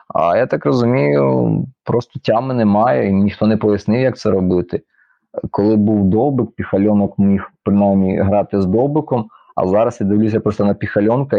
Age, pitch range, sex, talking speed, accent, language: 30-49, 100-115 Hz, male, 160 wpm, native, Ukrainian